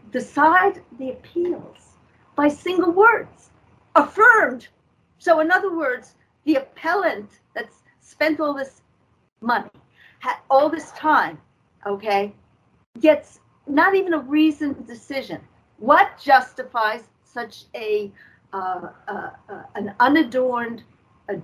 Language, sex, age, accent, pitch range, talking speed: English, female, 50-69, American, 225-320 Hz, 110 wpm